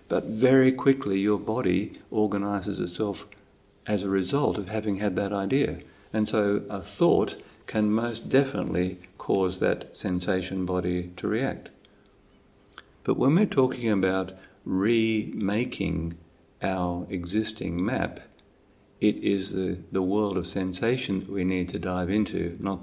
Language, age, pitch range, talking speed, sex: English, 50-69, 90-105 Hz, 135 wpm, male